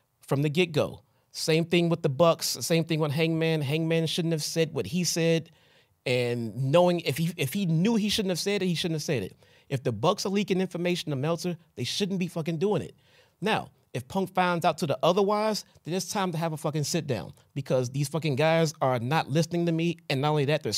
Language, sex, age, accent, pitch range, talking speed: English, male, 30-49, American, 150-195 Hz, 235 wpm